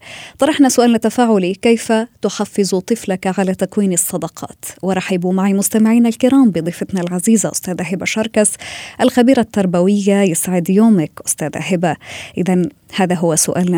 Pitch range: 175-220 Hz